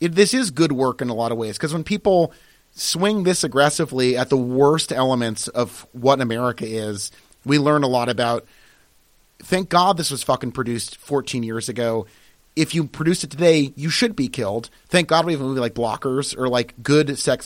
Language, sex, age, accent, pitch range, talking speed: English, male, 30-49, American, 125-165 Hz, 200 wpm